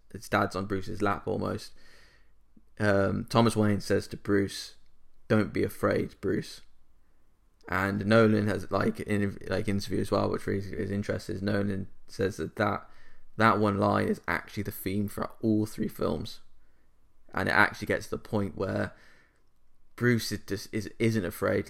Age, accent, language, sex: 20-39, British, English, male